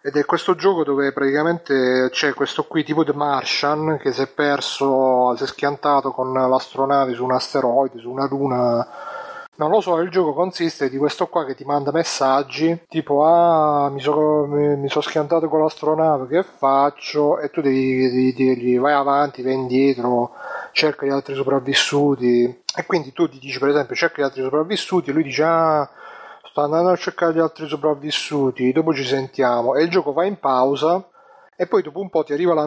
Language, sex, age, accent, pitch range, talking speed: Italian, male, 30-49, native, 135-160 Hz, 185 wpm